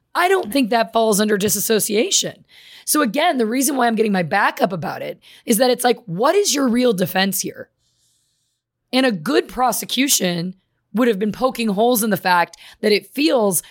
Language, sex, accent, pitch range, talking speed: English, female, American, 185-230 Hz, 195 wpm